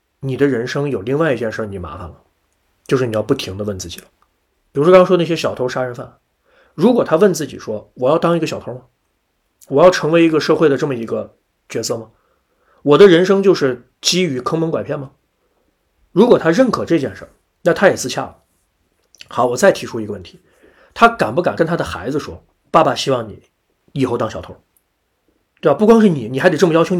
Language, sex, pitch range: Chinese, male, 105-170 Hz